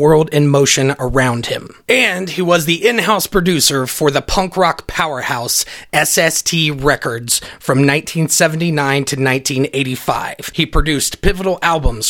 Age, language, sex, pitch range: 30-49, English, male, 140-175 Hz